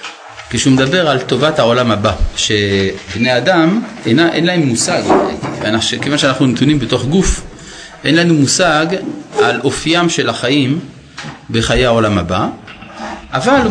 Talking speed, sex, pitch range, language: 125 wpm, male, 115-175 Hz, Hebrew